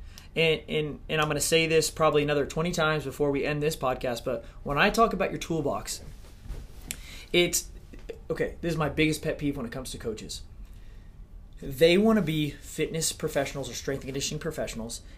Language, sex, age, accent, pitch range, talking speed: English, male, 30-49, American, 125-165 Hz, 190 wpm